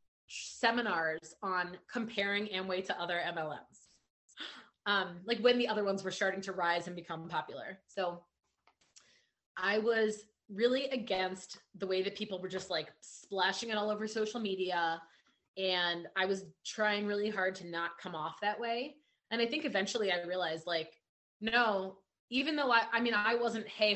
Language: English